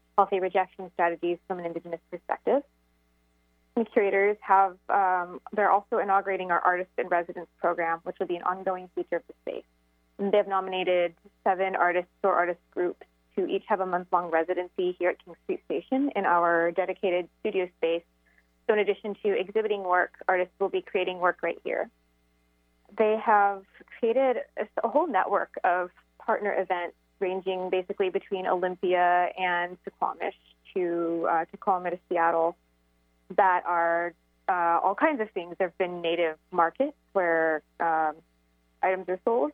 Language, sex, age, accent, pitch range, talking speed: English, female, 20-39, American, 170-195 Hz, 155 wpm